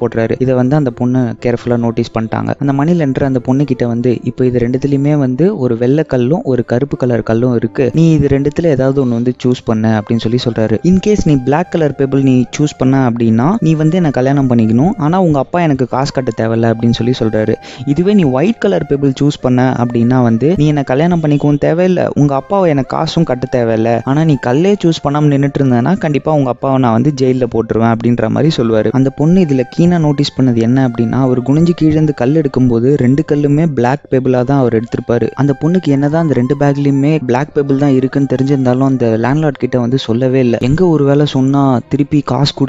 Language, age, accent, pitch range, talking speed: Tamil, 20-39, native, 120-150 Hz, 50 wpm